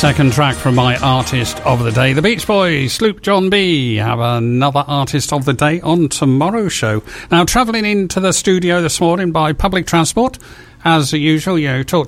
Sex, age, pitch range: male, 50-69, 115-170 Hz